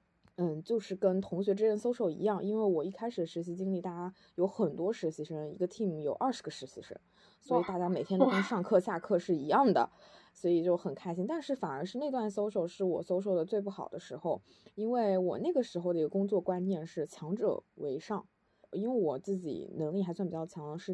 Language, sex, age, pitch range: Chinese, female, 20-39, 165-200 Hz